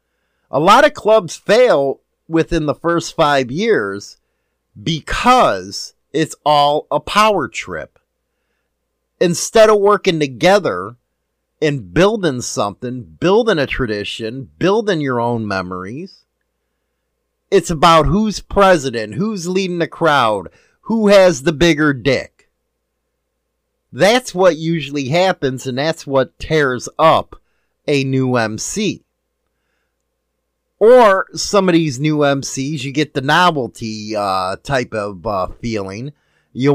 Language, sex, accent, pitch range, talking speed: English, male, American, 130-185 Hz, 115 wpm